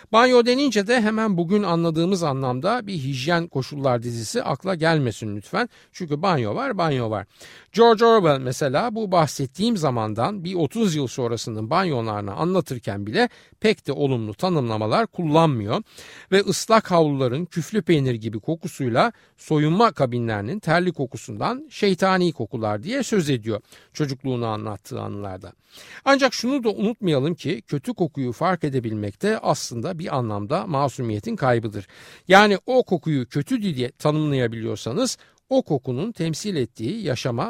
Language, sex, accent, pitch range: Turkish, male, native, 115-190 Hz